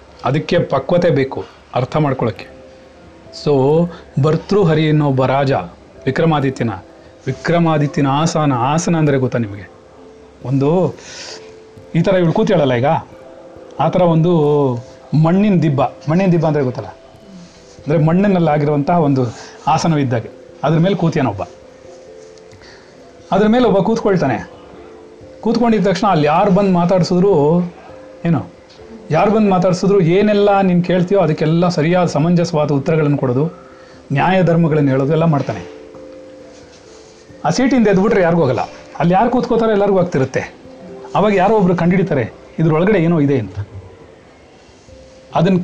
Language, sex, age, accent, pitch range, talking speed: Kannada, male, 40-59, native, 135-180 Hz, 110 wpm